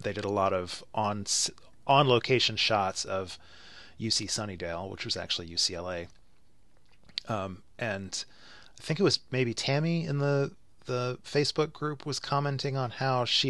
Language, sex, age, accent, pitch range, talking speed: English, male, 30-49, American, 95-125 Hz, 150 wpm